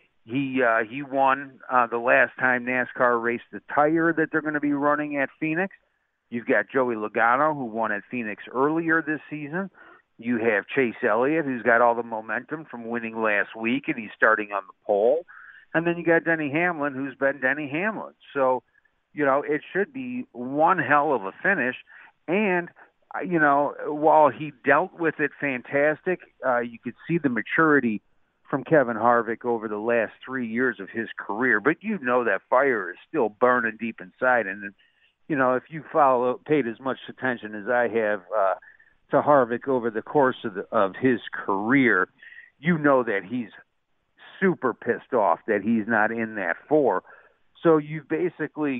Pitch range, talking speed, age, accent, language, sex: 115-155 Hz, 180 wpm, 50-69, American, English, male